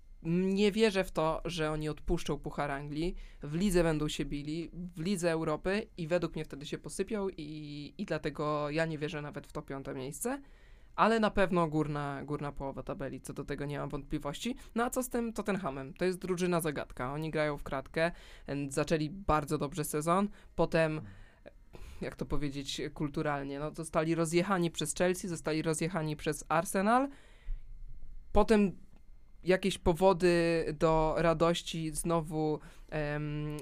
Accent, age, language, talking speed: native, 20-39, Polish, 155 wpm